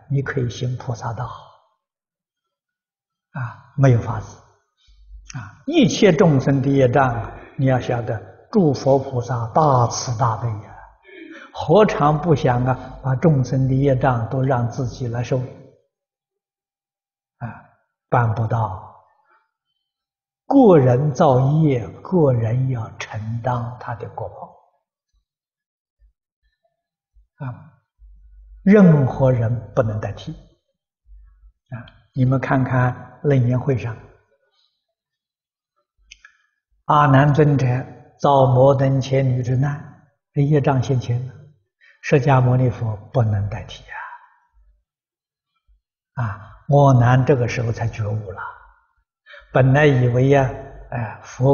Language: Chinese